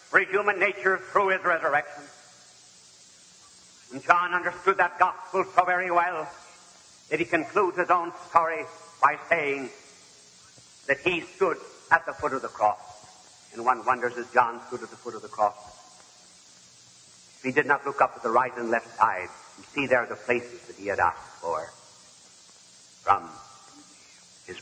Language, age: English, 60-79